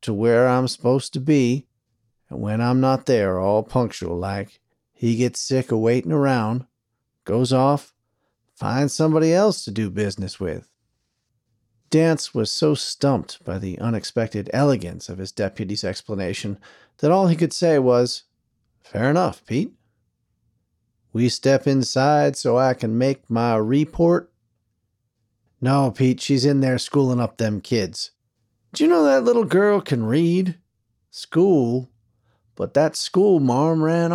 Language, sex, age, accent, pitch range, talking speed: English, male, 40-59, American, 110-135 Hz, 140 wpm